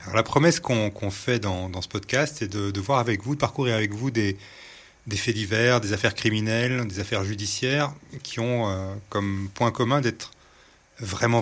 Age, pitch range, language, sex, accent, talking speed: 30-49, 100-125 Hz, French, male, French, 200 wpm